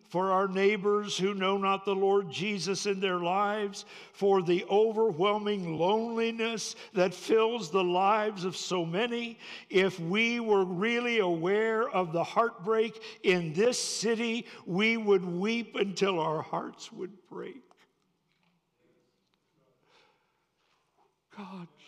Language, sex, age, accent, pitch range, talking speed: English, male, 60-79, American, 165-205 Hz, 120 wpm